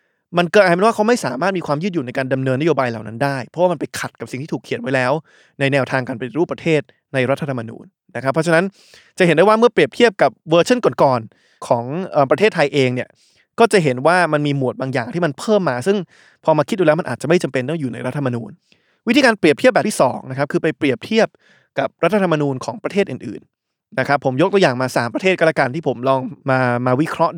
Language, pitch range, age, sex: Thai, 135-185 Hz, 20-39, male